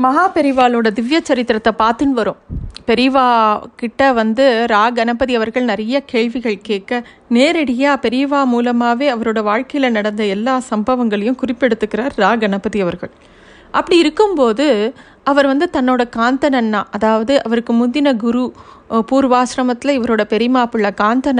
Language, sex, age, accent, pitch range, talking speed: Tamil, female, 30-49, native, 220-270 Hz, 120 wpm